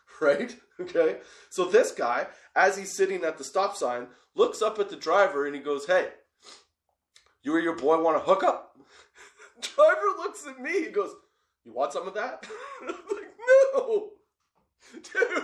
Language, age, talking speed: English, 20-39, 170 wpm